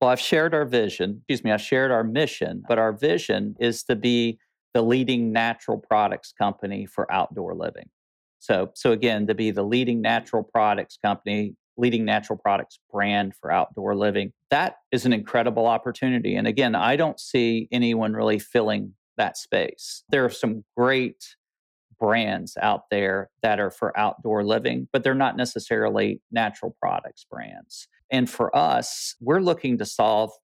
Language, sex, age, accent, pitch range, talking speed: English, male, 40-59, American, 105-125 Hz, 165 wpm